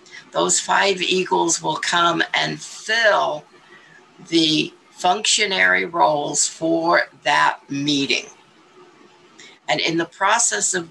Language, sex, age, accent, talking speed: English, female, 50-69, American, 100 wpm